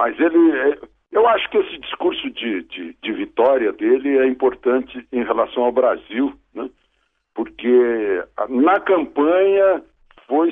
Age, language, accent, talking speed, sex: 60-79, Portuguese, Brazilian, 130 wpm, male